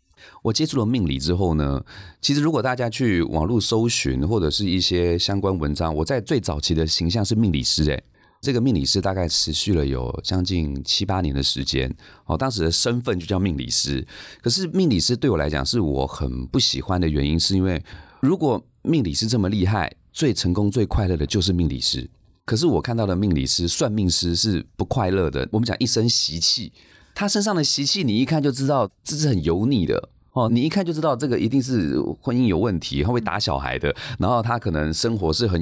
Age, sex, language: 30-49, male, Chinese